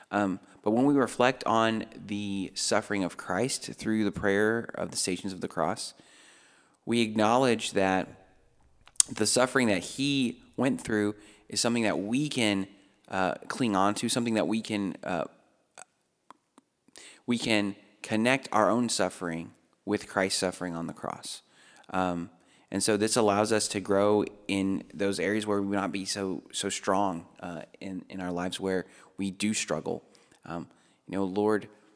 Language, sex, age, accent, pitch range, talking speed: English, male, 30-49, American, 95-105 Hz, 160 wpm